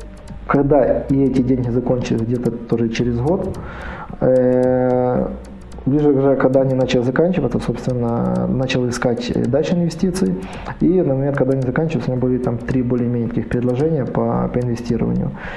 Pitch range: 120-140 Hz